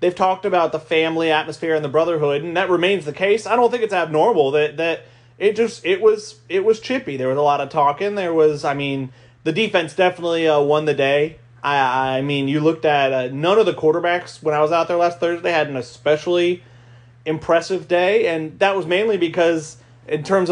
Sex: male